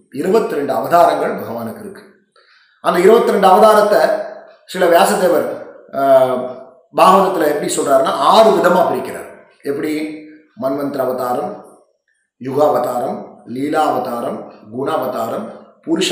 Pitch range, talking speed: 150-235 Hz, 90 wpm